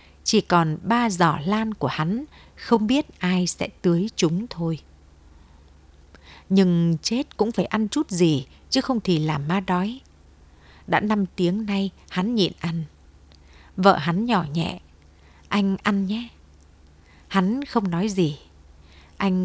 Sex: female